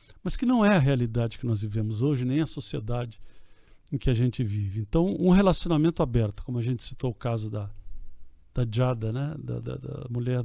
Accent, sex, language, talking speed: Brazilian, male, Portuguese, 205 wpm